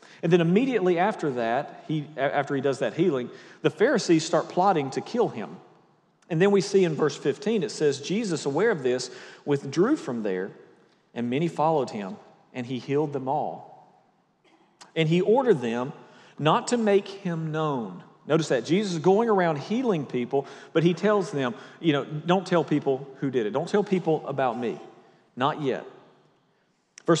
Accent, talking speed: American, 175 wpm